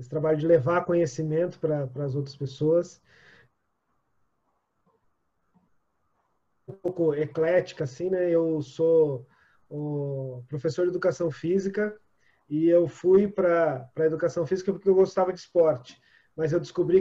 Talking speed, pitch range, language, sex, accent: 125 wpm, 160-200 Hz, Portuguese, male, Brazilian